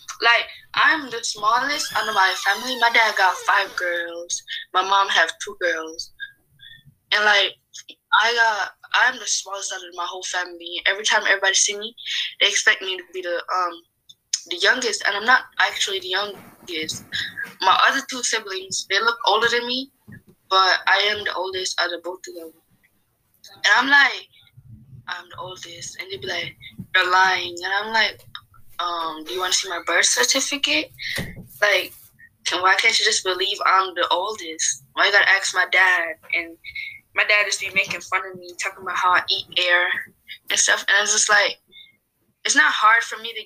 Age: 10-29